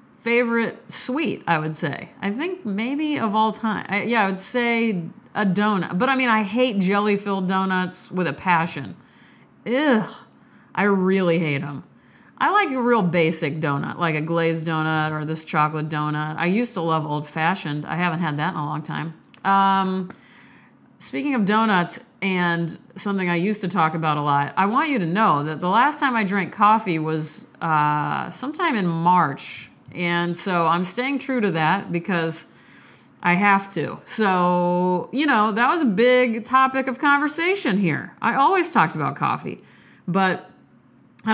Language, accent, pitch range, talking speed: English, American, 170-230 Hz, 170 wpm